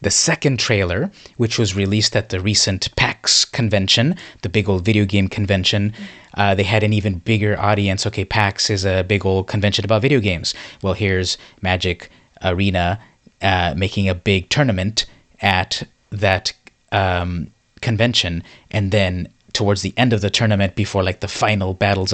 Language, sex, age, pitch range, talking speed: English, male, 30-49, 95-105 Hz, 165 wpm